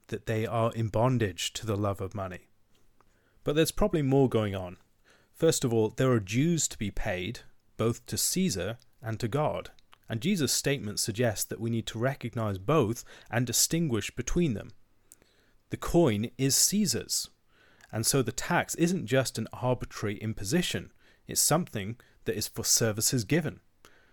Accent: British